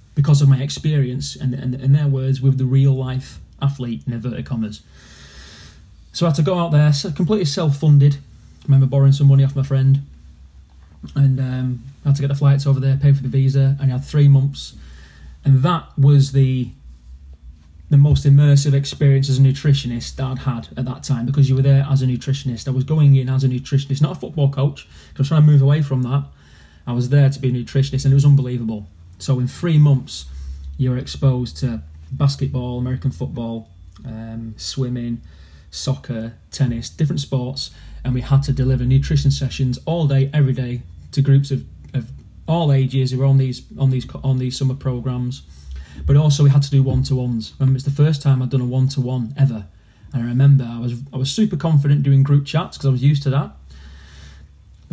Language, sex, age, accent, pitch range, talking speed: English, male, 30-49, British, 120-140 Hz, 210 wpm